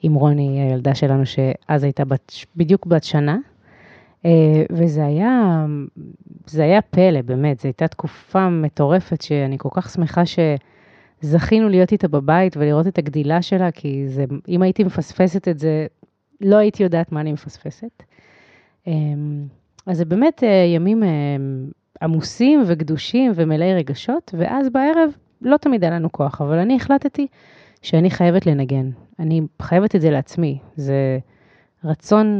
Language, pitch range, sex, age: Hebrew, 150-190 Hz, female, 30-49